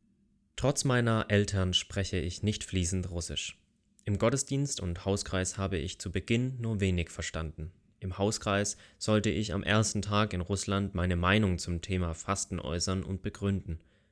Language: German